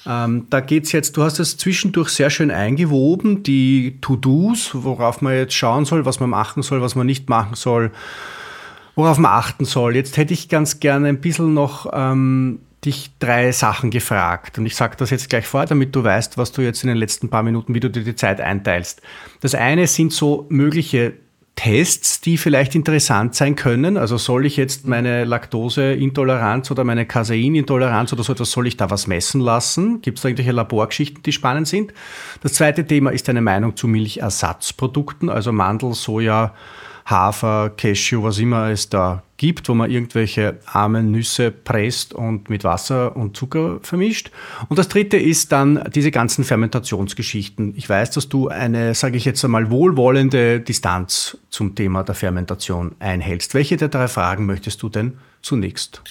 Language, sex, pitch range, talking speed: German, male, 110-145 Hz, 180 wpm